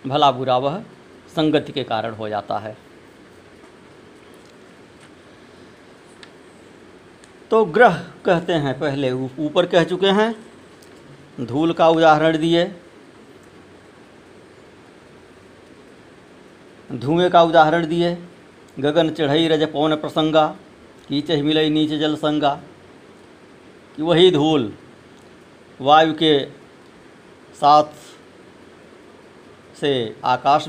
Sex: male